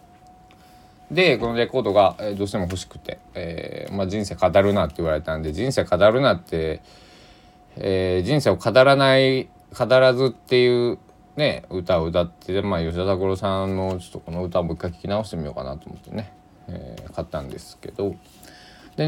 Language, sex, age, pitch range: Japanese, male, 20-39, 85-130 Hz